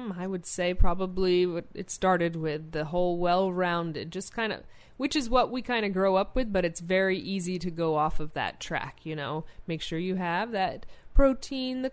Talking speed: 205 wpm